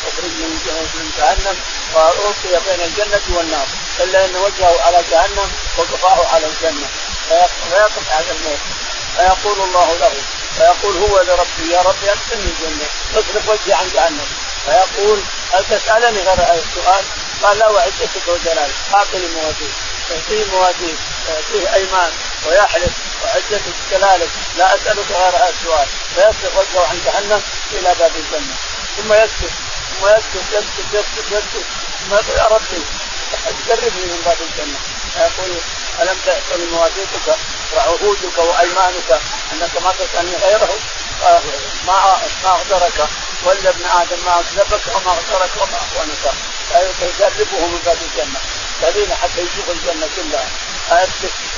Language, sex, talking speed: Arabic, male, 125 wpm